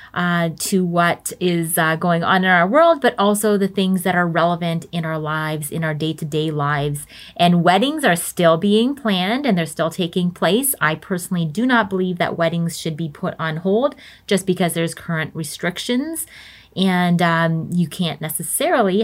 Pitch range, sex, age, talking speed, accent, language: 165-200 Hz, female, 30-49, 180 wpm, American, English